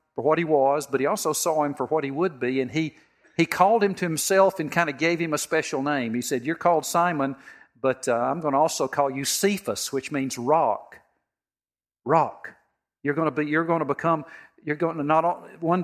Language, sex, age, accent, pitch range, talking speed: English, male, 50-69, American, 135-170 Hz, 225 wpm